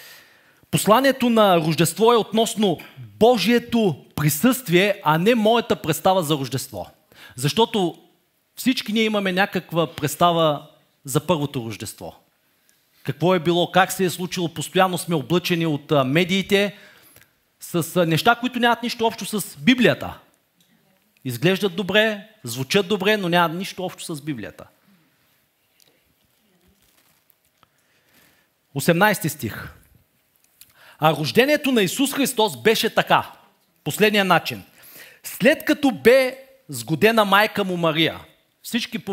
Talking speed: 110 wpm